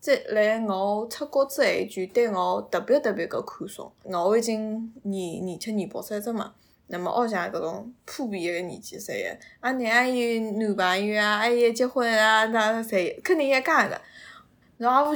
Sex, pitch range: female, 185-225 Hz